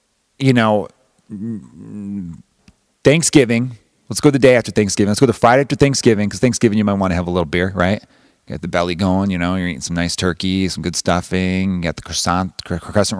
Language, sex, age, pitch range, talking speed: English, male, 30-49, 90-120 Hz, 205 wpm